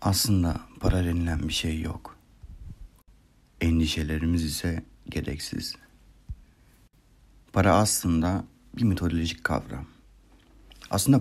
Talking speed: 80 wpm